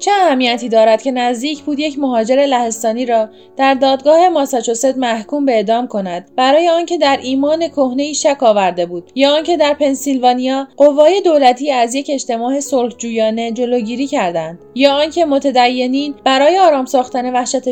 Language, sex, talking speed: Persian, female, 145 wpm